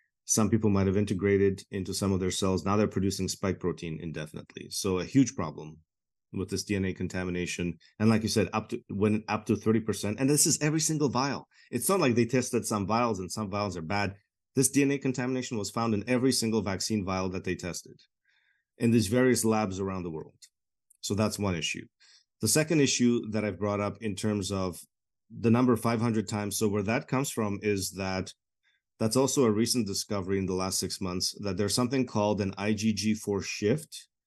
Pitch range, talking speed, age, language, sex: 95-115 Hz, 200 wpm, 30-49, English, male